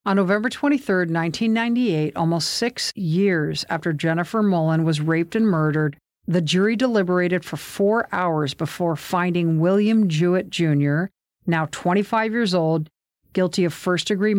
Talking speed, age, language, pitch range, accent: 135 wpm, 50-69, English, 165-200 Hz, American